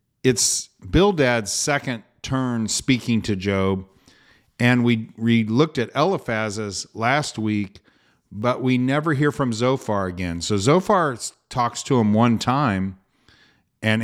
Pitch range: 110-130 Hz